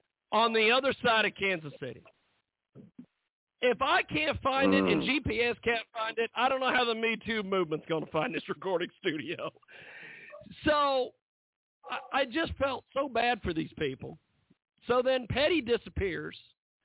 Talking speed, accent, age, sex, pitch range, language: 160 wpm, American, 50-69, male, 195-275 Hz, English